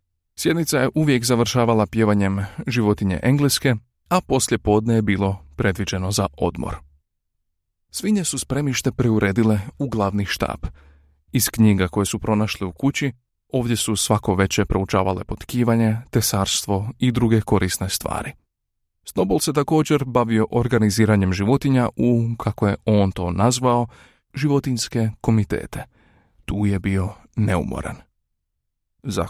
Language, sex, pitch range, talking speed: Croatian, male, 100-125 Hz, 120 wpm